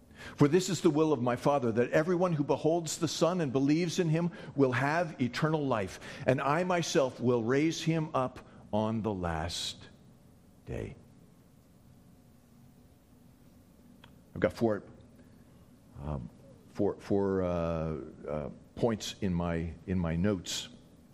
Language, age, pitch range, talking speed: English, 50-69, 85-120 Hz, 135 wpm